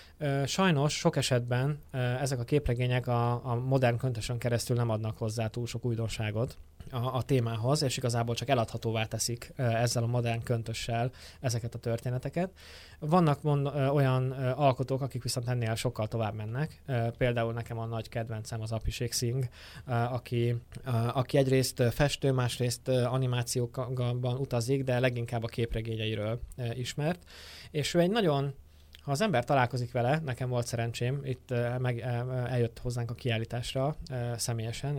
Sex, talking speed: male, 135 wpm